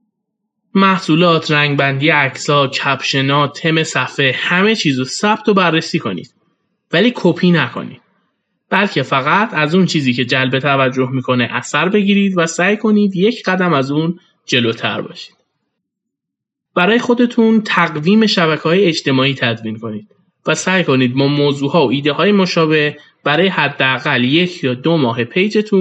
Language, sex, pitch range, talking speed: Persian, male, 140-195 Hz, 140 wpm